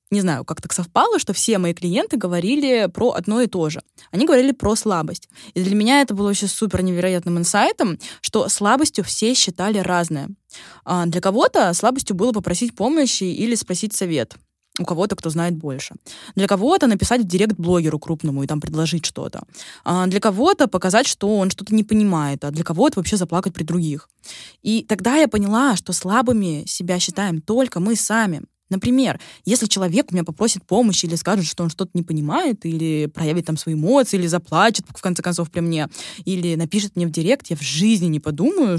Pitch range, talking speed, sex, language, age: 170-220 Hz, 185 wpm, female, Russian, 20-39